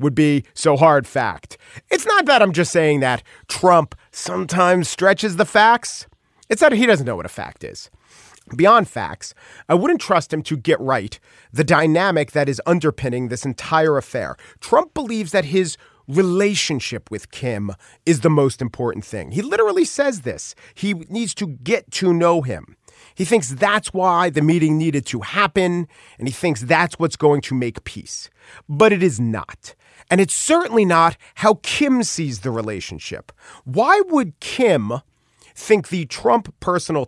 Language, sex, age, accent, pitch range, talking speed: English, male, 40-59, American, 130-185 Hz, 170 wpm